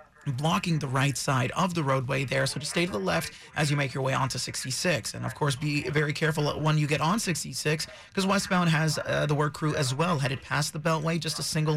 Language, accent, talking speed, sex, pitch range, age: English, American, 245 wpm, male, 140-165 Hz, 30-49